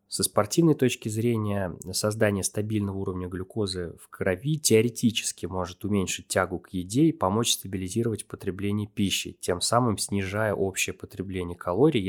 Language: Russian